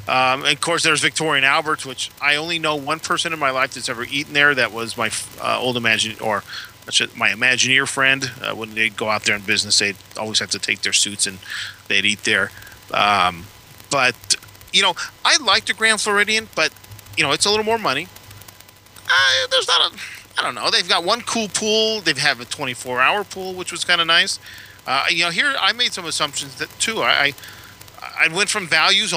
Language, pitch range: English, 110-160 Hz